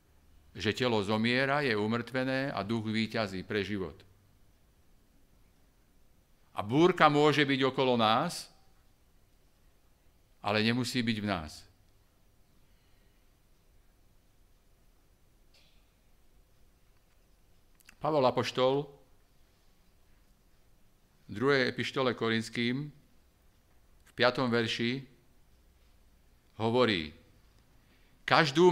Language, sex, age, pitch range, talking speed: Slovak, male, 50-69, 90-130 Hz, 65 wpm